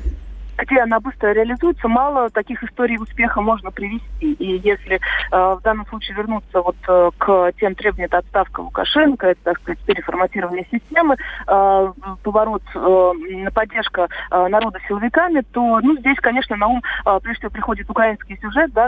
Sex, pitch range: female, 195-245 Hz